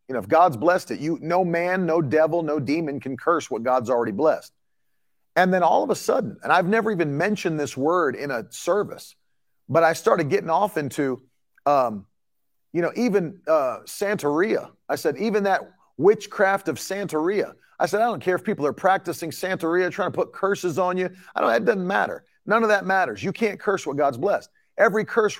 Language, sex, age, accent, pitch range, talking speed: English, male, 40-59, American, 150-190 Hz, 205 wpm